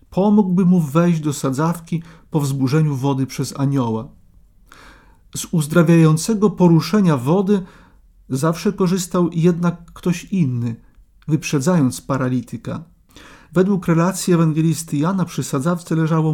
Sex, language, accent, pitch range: male, Polish, native, 135-175 Hz